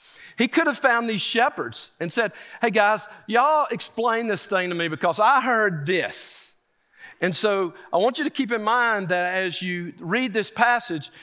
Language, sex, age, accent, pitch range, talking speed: English, male, 50-69, American, 155-215 Hz, 185 wpm